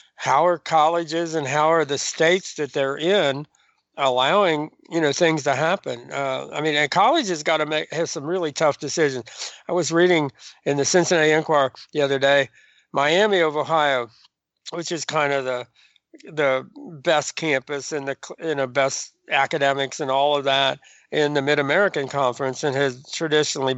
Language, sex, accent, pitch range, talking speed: English, male, American, 135-165 Hz, 175 wpm